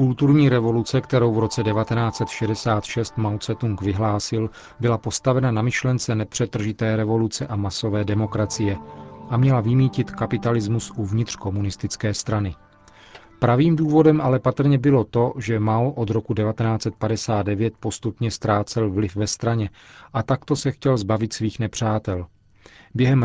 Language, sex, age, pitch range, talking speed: Czech, male, 40-59, 105-120 Hz, 125 wpm